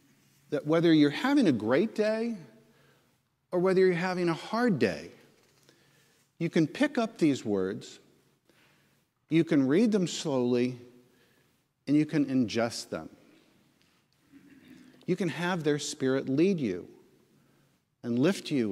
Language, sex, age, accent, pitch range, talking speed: English, male, 50-69, American, 125-170 Hz, 130 wpm